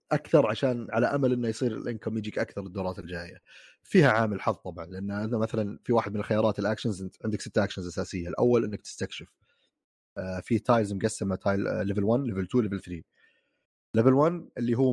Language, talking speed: Arabic, 175 wpm